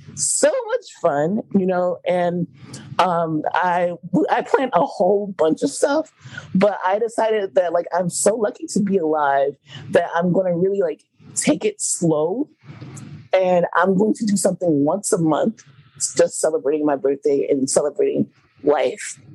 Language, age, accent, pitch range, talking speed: English, 30-49, American, 150-215 Hz, 160 wpm